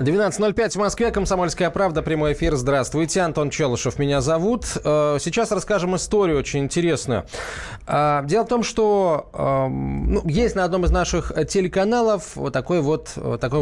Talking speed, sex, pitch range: 140 wpm, male, 135-200 Hz